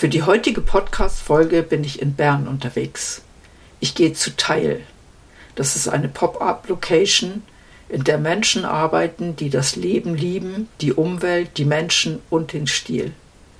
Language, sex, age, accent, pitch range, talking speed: German, female, 60-79, German, 115-160 Hz, 140 wpm